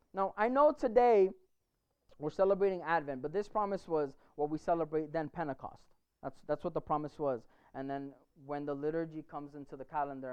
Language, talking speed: English, 180 wpm